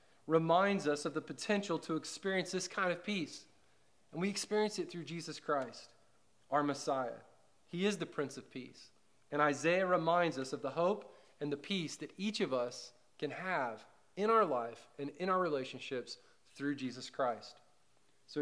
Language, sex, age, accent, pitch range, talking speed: English, male, 30-49, American, 140-180 Hz, 175 wpm